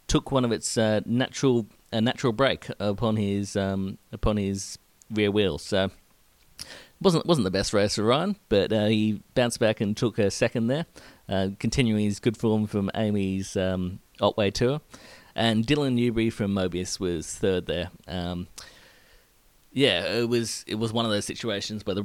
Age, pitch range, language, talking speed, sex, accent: 30-49, 100-120 Hz, English, 175 wpm, male, Australian